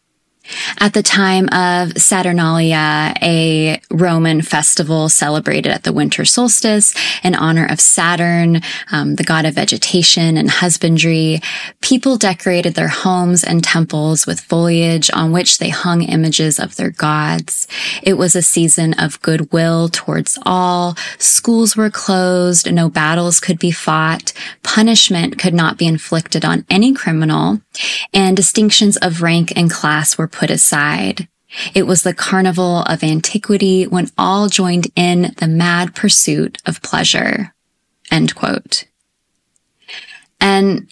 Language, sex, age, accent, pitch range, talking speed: English, female, 20-39, American, 165-195 Hz, 135 wpm